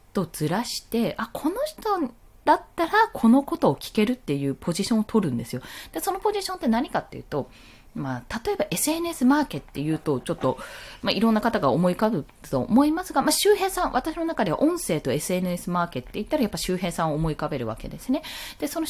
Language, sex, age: Japanese, female, 20-39